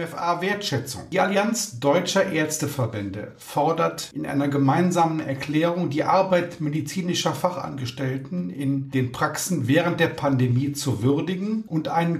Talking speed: 120 wpm